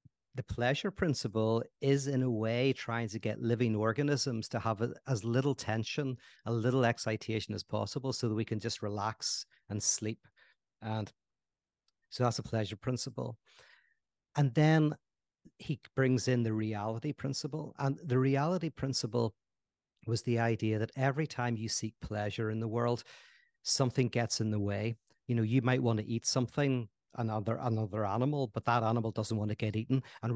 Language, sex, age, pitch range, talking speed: English, male, 50-69, 110-130 Hz, 170 wpm